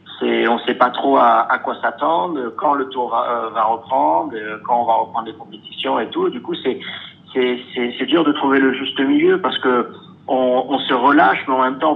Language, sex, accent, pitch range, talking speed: French, male, French, 115-140 Hz, 225 wpm